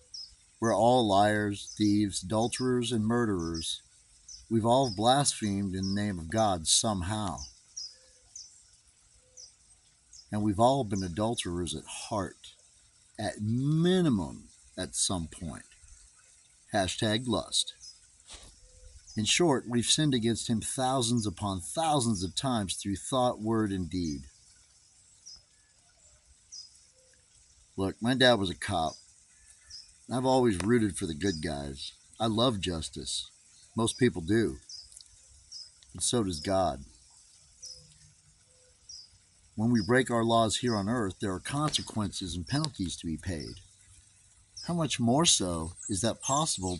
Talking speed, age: 120 wpm, 50-69